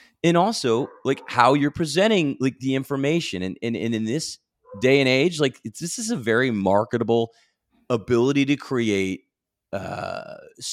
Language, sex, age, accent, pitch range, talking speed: English, male, 30-49, American, 115-160 Hz, 155 wpm